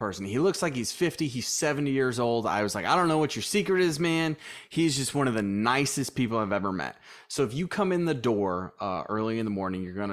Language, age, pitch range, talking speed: English, 20-39, 110-145 Hz, 265 wpm